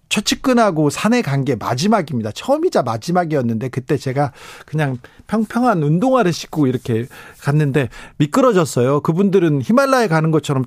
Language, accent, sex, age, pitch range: Korean, native, male, 40-59, 125-165 Hz